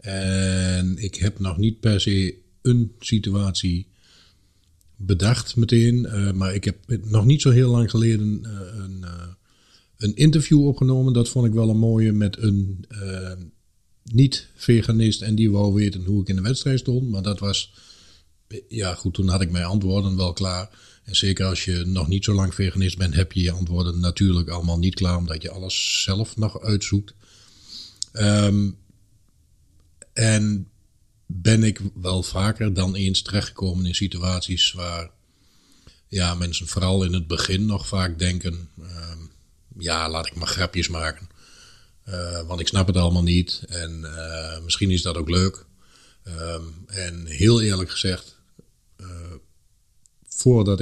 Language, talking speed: Dutch, 155 wpm